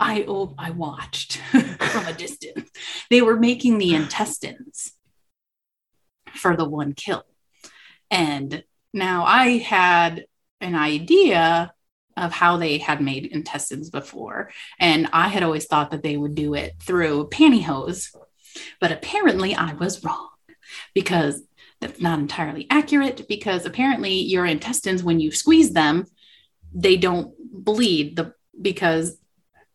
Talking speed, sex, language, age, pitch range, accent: 130 wpm, female, English, 30-49, 160-215 Hz, American